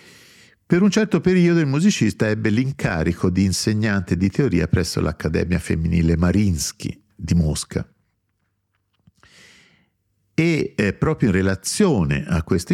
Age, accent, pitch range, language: 50-69, native, 85-115 Hz, Italian